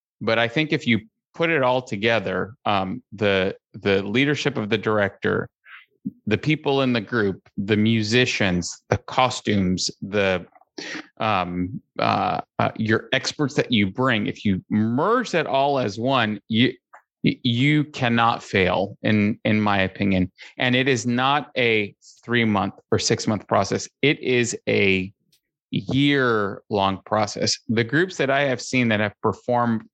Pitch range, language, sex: 105-125 Hz, English, male